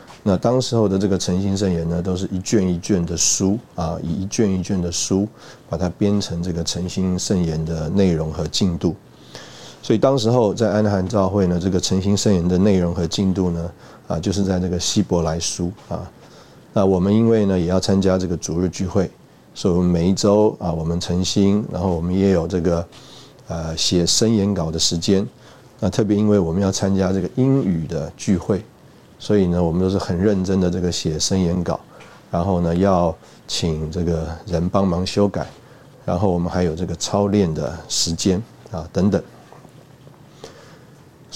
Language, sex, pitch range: Chinese, male, 85-105 Hz